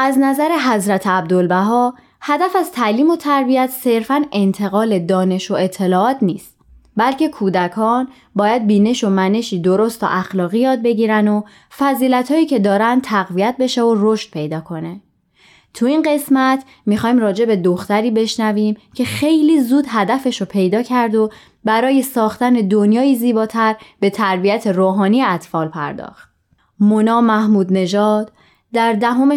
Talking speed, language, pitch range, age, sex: 125 wpm, Persian, 190-245 Hz, 20-39, female